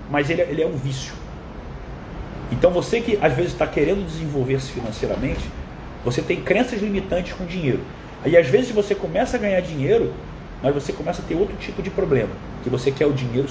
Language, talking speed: Portuguese, 190 wpm